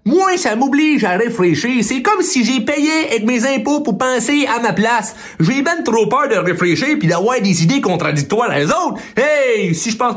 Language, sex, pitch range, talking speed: French, male, 195-285 Hz, 220 wpm